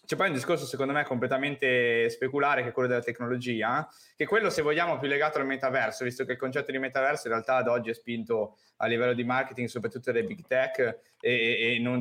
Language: Italian